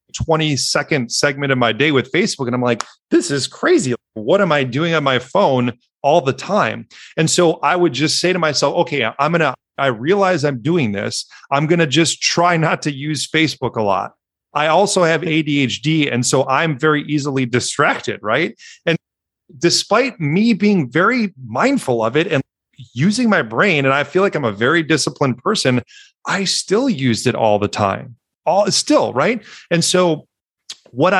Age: 30-49